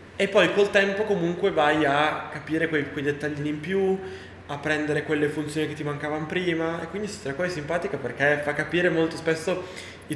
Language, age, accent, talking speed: Italian, 20-39, native, 200 wpm